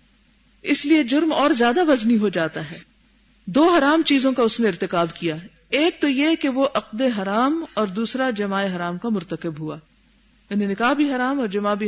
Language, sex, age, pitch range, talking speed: Urdu, female, 50-69, 185-235 Hz, 185 wpm